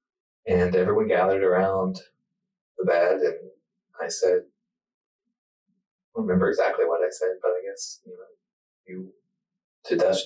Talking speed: 140 wpm